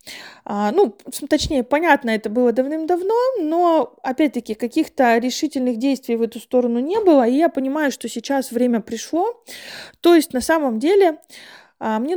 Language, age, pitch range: Russian, 20-39, 235-300 Hz